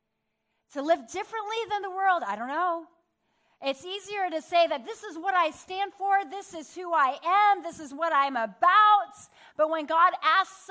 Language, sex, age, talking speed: English, female, 30-49, 190 wpm